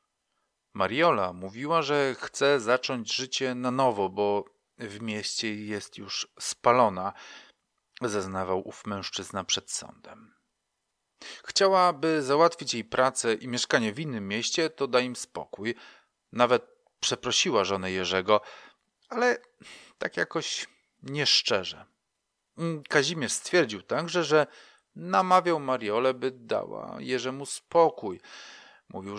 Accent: native